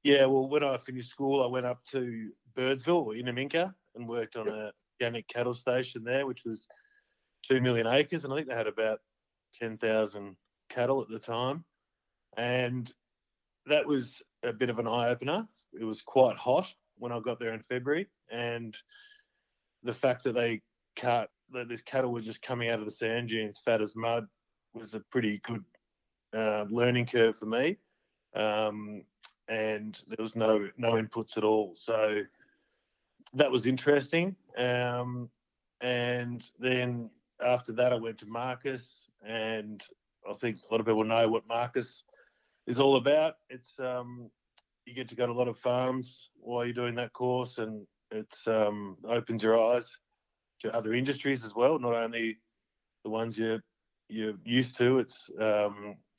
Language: English